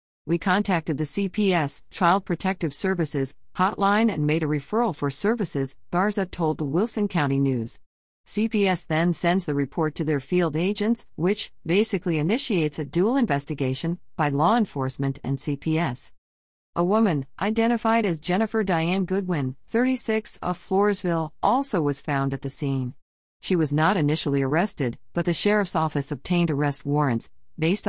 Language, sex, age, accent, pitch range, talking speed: English, female, 40-59, American, 140-185 Hz, 150 wpm